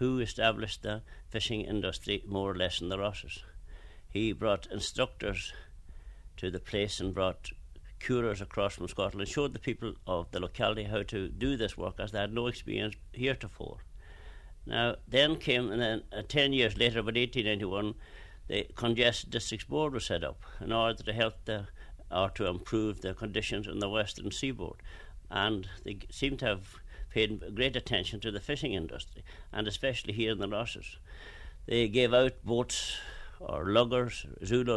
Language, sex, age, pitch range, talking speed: English, male, 60-79, 90-115 Hz, 170 wpm